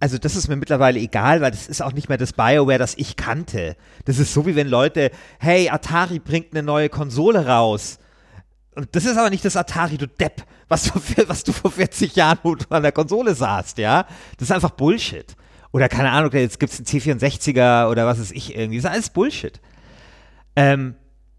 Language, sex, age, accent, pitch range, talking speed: German, male, 30-49, German, 125-165 Hz, 205 wpm